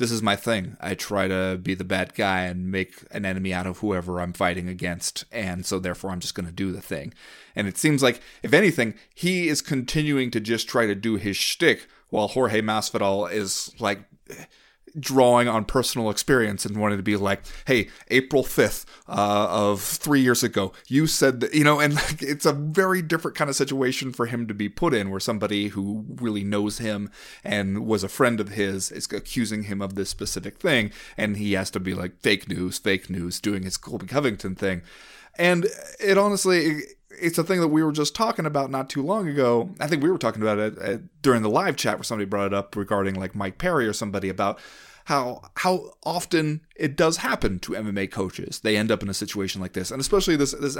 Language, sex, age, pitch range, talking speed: English, male, 30-49, 100-135 Hz, 215 wpm